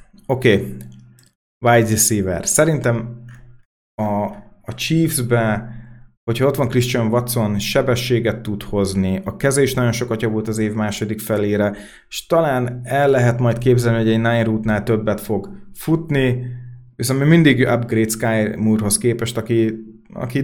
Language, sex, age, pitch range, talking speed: Hungarian, male, 30-49, 105-125 Hz, 130 wpm